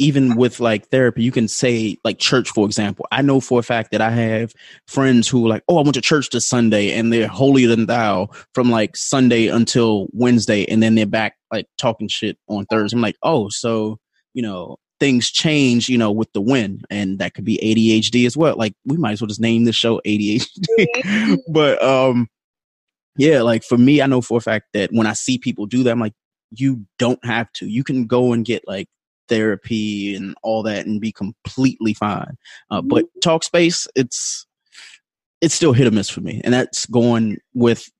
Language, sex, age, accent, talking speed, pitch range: English, male, 20-39, American, 210 wpm, 110-125 Hz